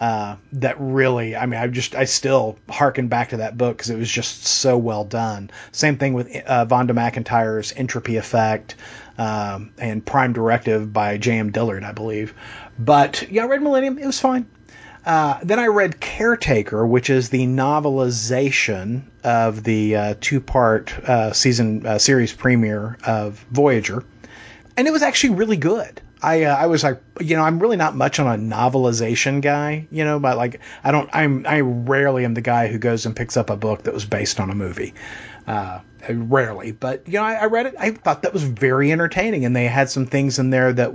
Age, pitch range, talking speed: 40-59, 110-140 Hz, 200 wpm